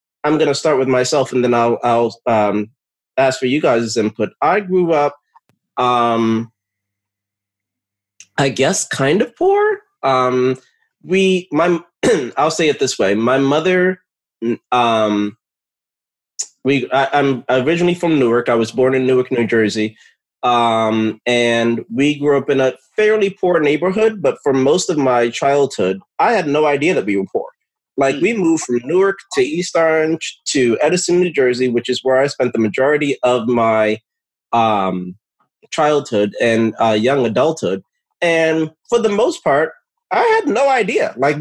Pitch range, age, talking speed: 120-185 Hz, 20-39, 160 wpm